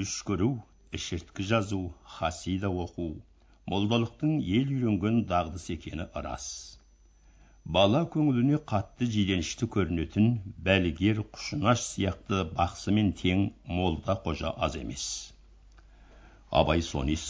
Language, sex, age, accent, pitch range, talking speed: Russian, male, 60-79, Turkish, 80-110 Hz, 95 wpm